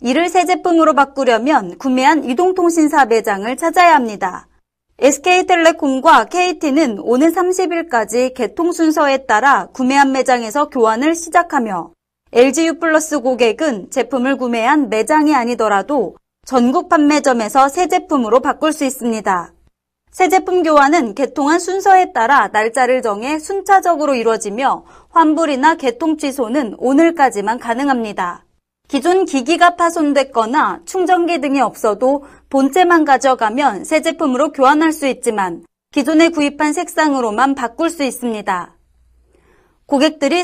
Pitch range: 250-325 Hz